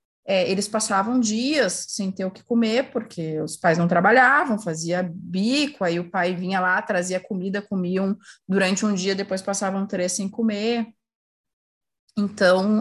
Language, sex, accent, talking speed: Portuguese, female, Brazilian, 150 wpm